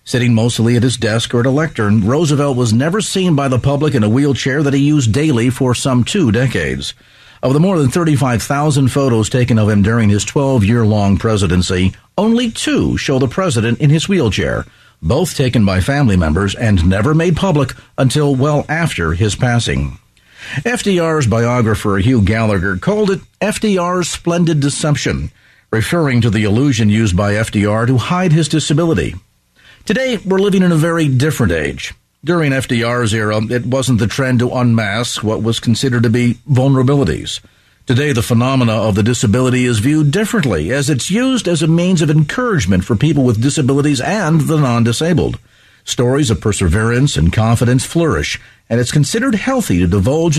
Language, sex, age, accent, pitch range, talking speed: English, male, 50-69, American, 115-155 Hz, 170 wpm